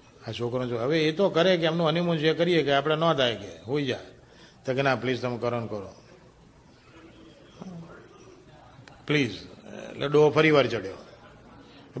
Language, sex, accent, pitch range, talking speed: Gujarati, male, native, 125-160 Hz, 155 wpm